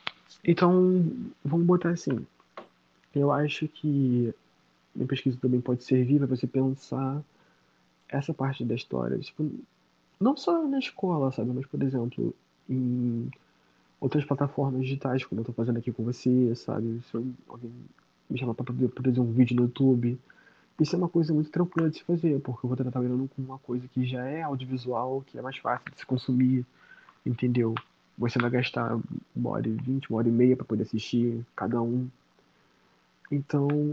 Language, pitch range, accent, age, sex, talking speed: Portuguese, 120-150 Hz, Brazilian, 20-39, male, 170 wpm